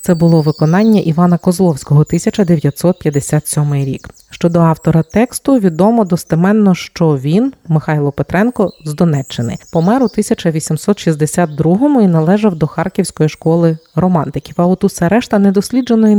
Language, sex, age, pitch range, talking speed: Ukrainian, female, 30-49, 155-205 Hz, 125 wpm